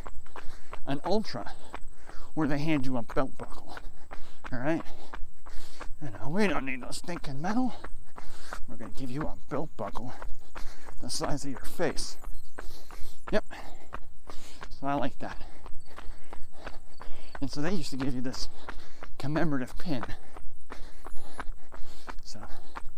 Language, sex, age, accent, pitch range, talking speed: English, male, 50-69, American, 85-140 Hz, 120 wpm